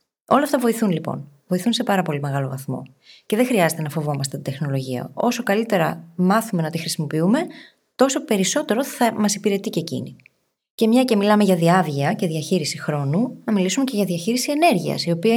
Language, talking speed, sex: Greek, 185 wpm, female